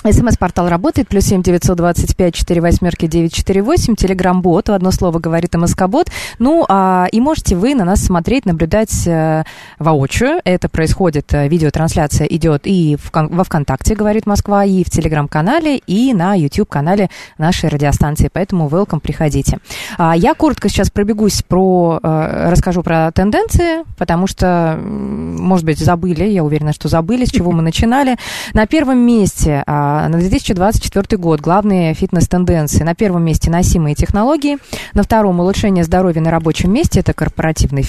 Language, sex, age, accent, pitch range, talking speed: Russian, female, 20-39, native, 160-205 Hz, 145 wpm